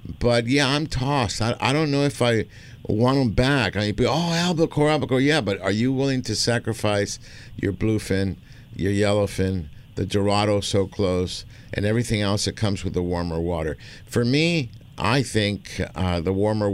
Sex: male